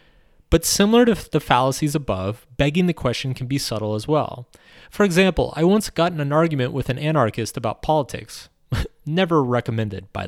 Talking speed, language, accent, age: 175 wpm, English, American, 30-49